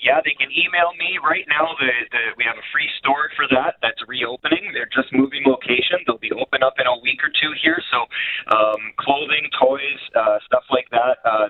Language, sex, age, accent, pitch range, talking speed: English, male, 30-49, American, 115-175 Hz, 215 wpm